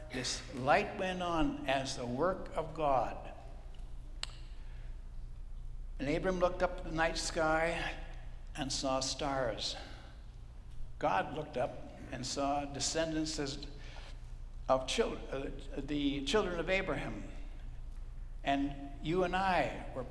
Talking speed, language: 105 wpm, English